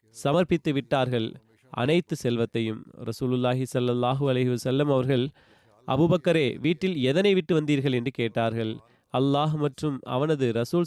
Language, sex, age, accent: Tamil, male, 30-49, native